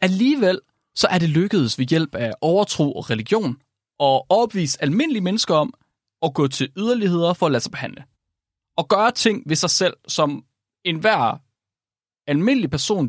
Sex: male